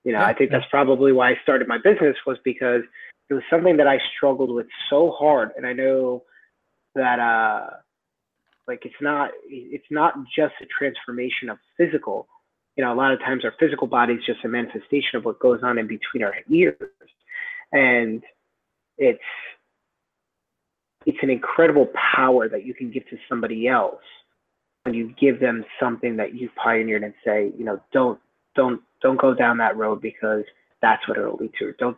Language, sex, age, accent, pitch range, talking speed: English, male, 30-49, American, 120-150 Hz, 185 wpm